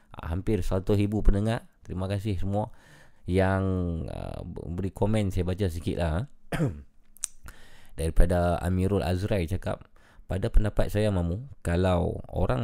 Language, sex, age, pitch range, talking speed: Malay, male, 20-39, 80-100 Hz, 125 wpm